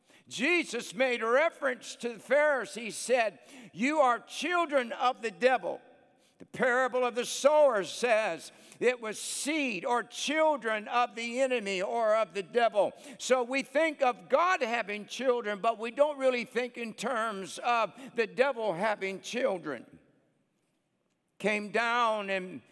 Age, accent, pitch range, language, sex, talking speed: 60-79, American, 200-255 Hz, English, male, 140 wpm